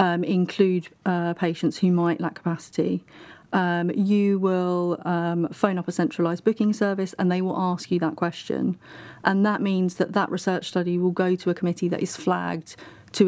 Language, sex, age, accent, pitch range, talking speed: English, female, 30-49, British, 170-185 Hz, 185 wpm